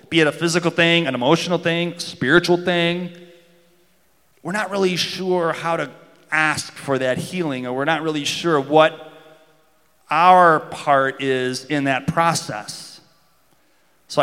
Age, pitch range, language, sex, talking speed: 30-49, 130-165 Hz, English, male, 145 wpm